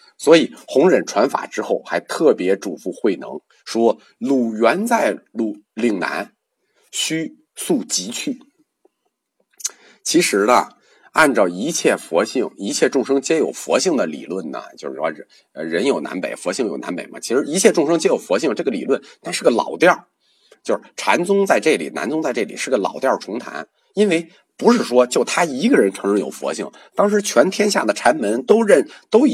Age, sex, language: 50-69, male, Chinese